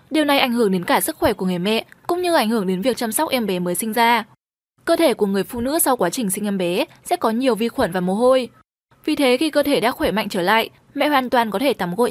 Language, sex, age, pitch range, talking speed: Vietnamese, female, 10-29, 205-280 Hz, 300 wpm